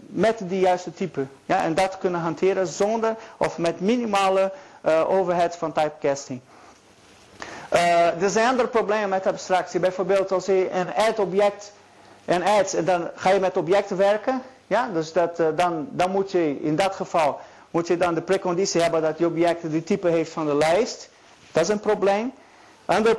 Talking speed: 175 wpm